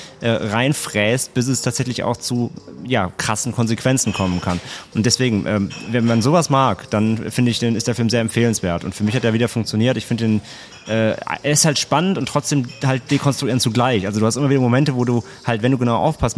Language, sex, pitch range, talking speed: German, male, 110-130 Hz, 220 wpm